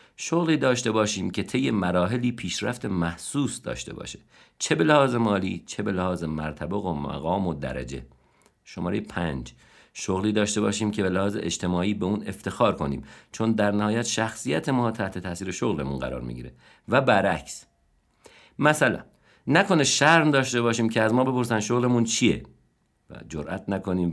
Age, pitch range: 50-69, 90-120 Hz